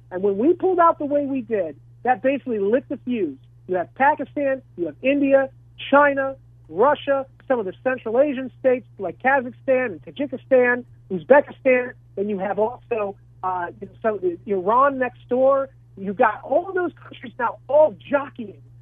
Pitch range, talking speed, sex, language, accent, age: 190-270 Hz, 165 wpm, male, English, American, 50-69